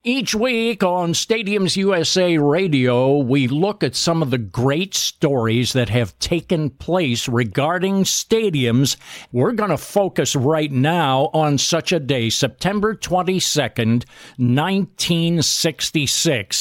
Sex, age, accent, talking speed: male, 50-69, American, 120 wpm